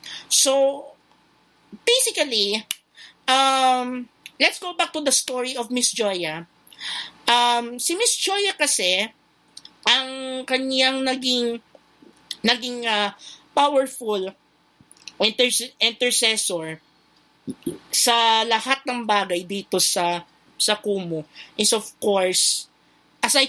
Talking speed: 95 wpm